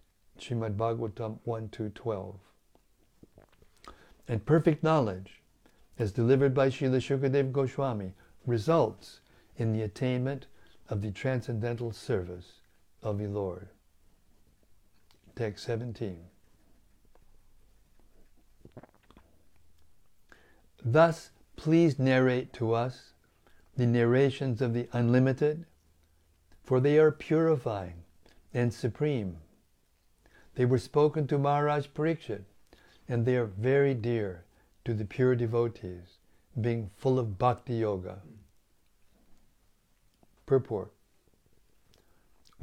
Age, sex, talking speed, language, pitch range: 60-79, male, 85 wpm, English, 100-140 Hz